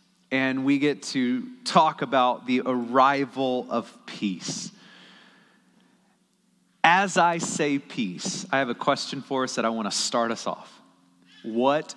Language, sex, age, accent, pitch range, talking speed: English, male, 30-49, American, 160-215 Hz, 140 wpm